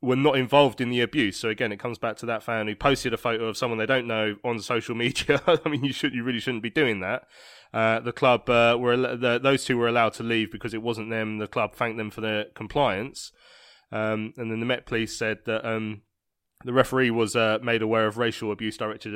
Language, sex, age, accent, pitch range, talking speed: English, male, 20-39, British, 110-125 Hz, 240 wpm